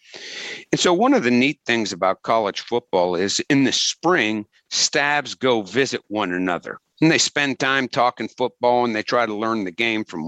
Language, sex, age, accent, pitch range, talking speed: English, male, 50-69, American, 115-145 Hz, 195 wpm